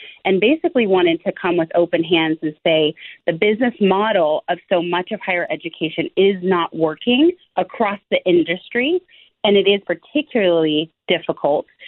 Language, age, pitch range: English, 30-49, 170-215 Hz